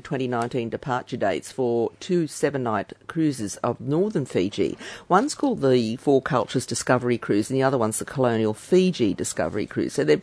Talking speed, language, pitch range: 170 wpm, English, 120-155 Hz